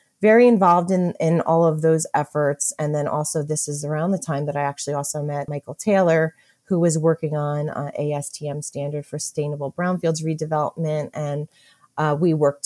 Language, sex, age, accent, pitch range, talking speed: English, female, 30-49, American, 145-175 Hz, 180 wpm